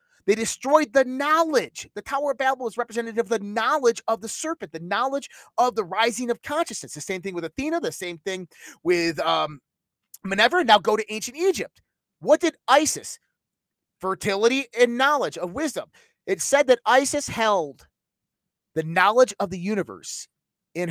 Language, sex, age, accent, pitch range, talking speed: English, male, 30-49, American, 195-275 Hz, 165 wpm